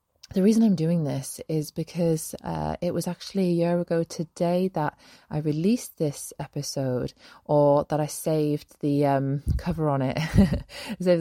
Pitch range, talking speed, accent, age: 140-170 Hz, 160 wpm, British, 20-39